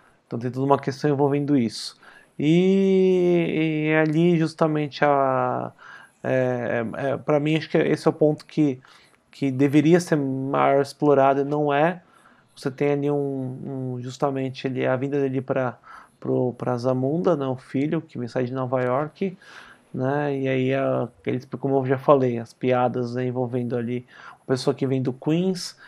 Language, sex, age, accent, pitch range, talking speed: Portuguese, male, 20-39, Brazilian, 130-150 Hz, 165 wpm